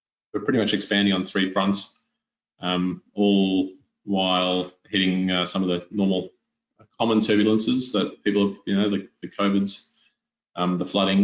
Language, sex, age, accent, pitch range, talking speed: English, male, 20-39, Australian, 90-100 Hz, 165 wpm